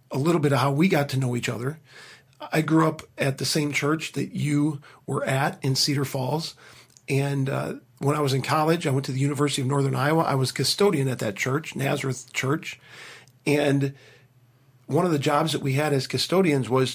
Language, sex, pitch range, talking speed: English, male, 135-155 Hz, 210 wpm